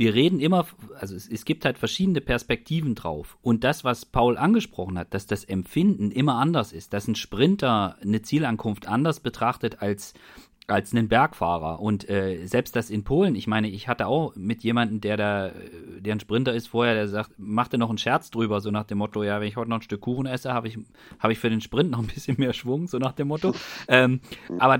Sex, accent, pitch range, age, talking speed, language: male, German, 105-145 Hz, 40-59, 220 wpm, German